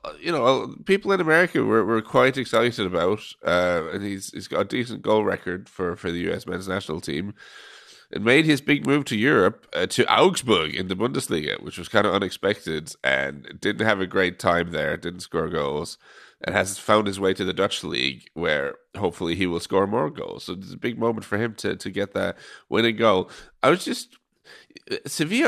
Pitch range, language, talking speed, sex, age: 95-130 Hz, English, 205 wpm, male, 30-49